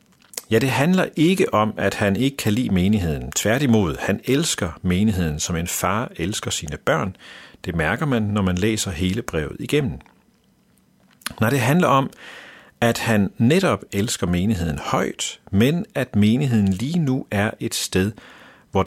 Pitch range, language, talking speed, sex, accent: 95-130 Hz, Danish, 155 wpm, male, native